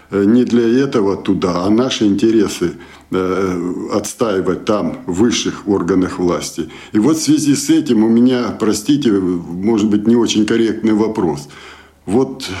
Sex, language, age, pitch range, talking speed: male, Russian, 60-79, 105-135 Hz, 145 wpm